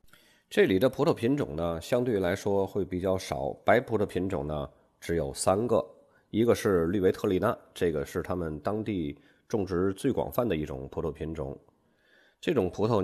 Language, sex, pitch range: Chinese, male, 80-110 Hz